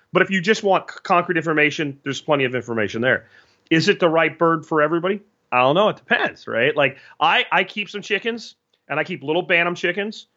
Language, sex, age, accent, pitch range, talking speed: English, male, 30-49, American, 150-195 Hz, 215 wpm